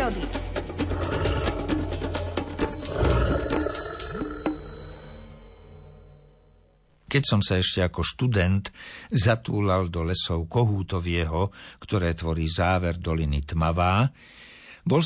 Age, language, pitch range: 50-69, Slovak, 85-120 Hz